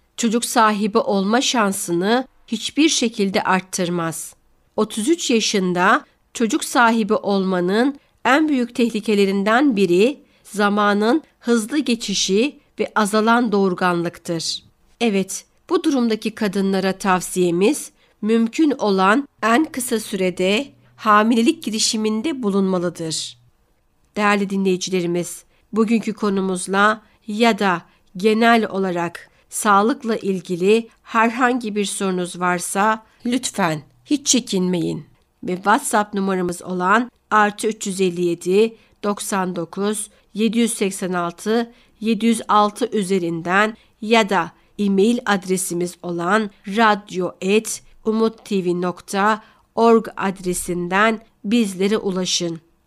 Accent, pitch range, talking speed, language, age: native, 185-225 Hz, 75 wpm, Turkish, 60-79